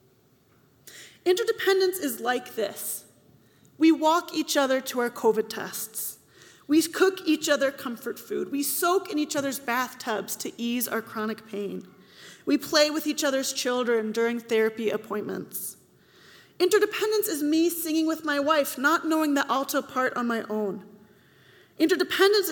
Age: 30-49